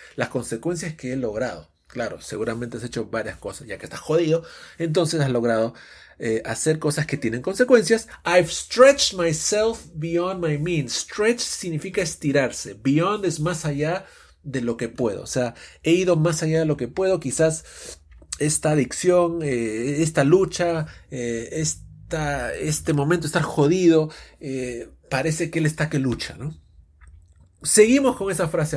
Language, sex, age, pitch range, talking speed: English, male, 30-49, 125-170 Hz, 155 wpm